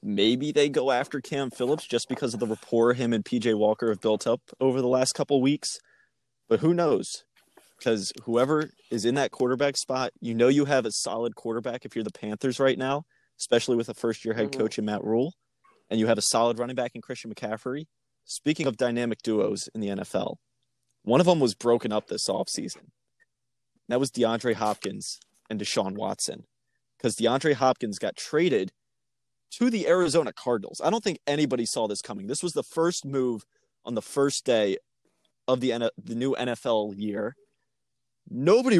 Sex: male